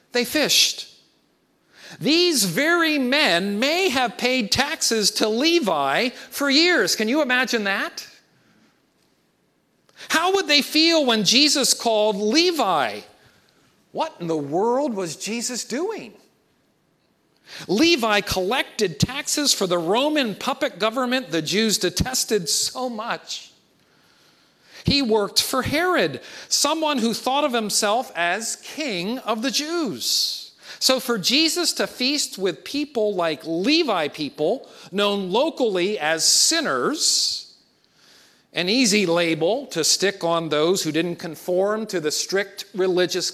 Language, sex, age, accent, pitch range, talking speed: English, male, 50-69, American, 190-295 Hz, 120 wpm